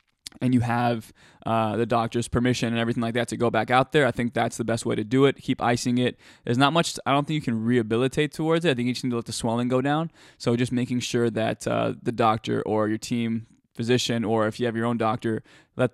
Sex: male